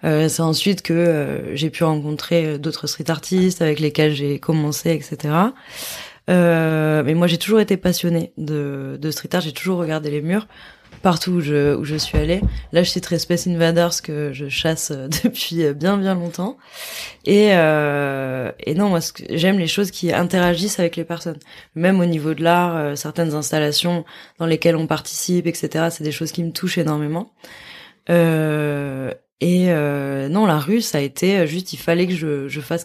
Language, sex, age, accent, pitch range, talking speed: French, female, 20-39, French, 155-180 Hz, 185 wpm